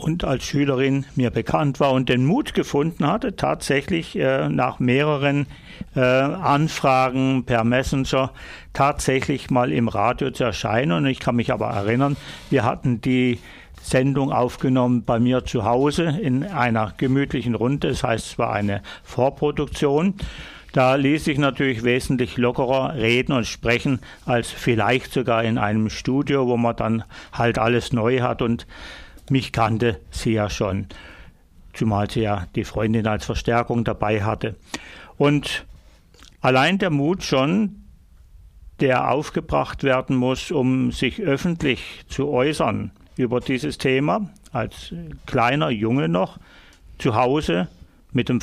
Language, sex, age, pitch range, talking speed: German, male, 60-79, 115-140 Hz, 140 wpm